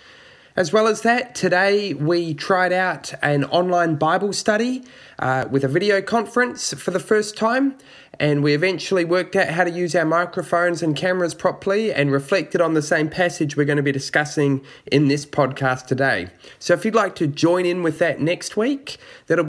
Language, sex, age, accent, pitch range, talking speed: English, male, 20-39, Australian, 140-185 Hz, 190 wpm